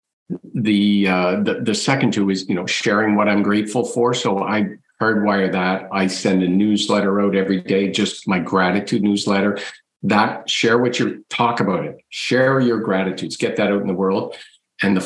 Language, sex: English, male